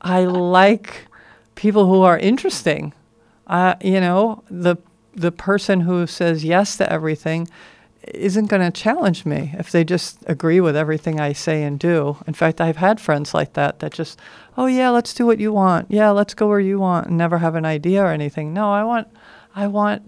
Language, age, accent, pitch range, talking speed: English, 50-69, American, 160-190 Hz, 195 wpm